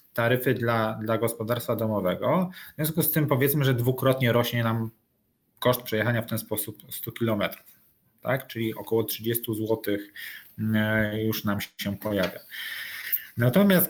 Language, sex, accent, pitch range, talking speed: Polish, male, native, 110-125 Hz, 130 wpm